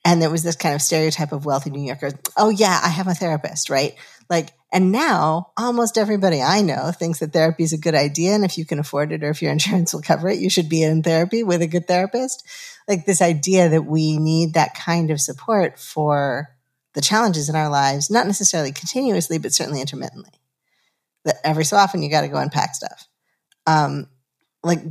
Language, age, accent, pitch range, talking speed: English, 40-59, American, 150-185 Hz, 210 wpm